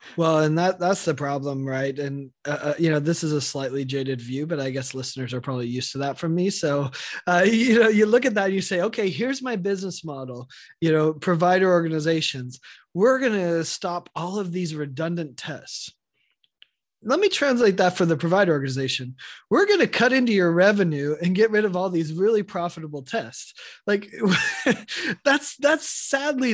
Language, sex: English, male